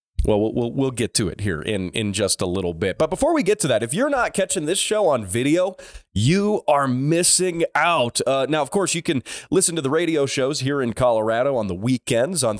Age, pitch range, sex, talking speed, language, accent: 30-49, 120-180 Hz, male, 235 wpm, English, American